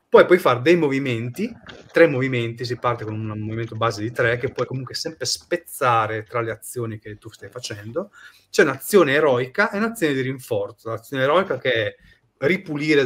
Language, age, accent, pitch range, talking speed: Italian, 30-49, native, 110-150 Hz, 175 wpm